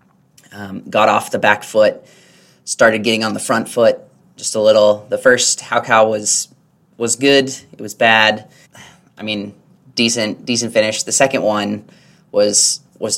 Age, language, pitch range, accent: 20-39, English, 105-125 Hz, American